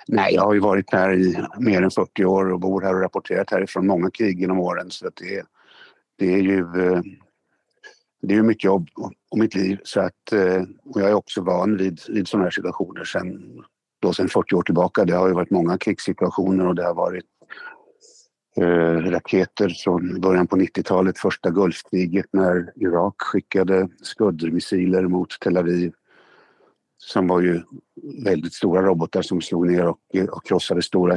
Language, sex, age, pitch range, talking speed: Swedish, male, 60-79, 90-100 Hz, 175 wpm